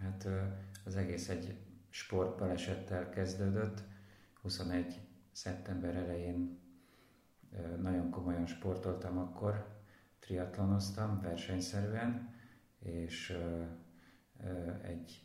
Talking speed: 65 wpm